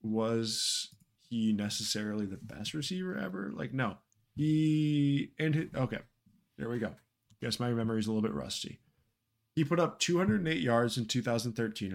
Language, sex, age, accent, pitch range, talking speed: English, male, 20-39, American, 105-125 Hz, 155 wpm